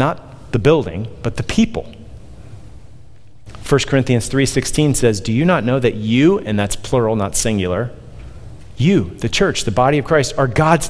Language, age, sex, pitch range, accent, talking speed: English, 40-59, male, 105-130 Hz, American, 165 wpm